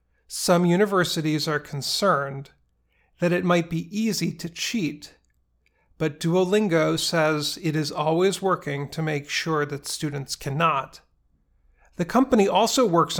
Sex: male